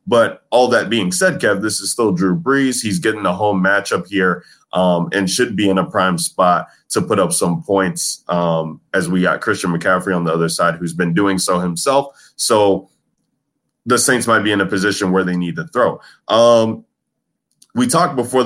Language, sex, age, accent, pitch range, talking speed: English, male, 20-39, American, 90-105 Hz, 200 wpm